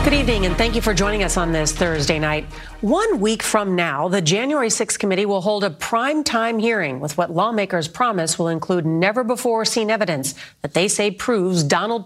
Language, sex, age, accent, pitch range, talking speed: English, female, 40-59, American, 155-210 Hz, 190 wpm